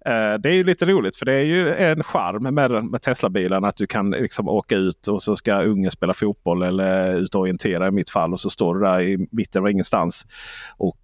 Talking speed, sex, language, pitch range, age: 230 wpm, male, Swedish, 100-165 Hz, 30-49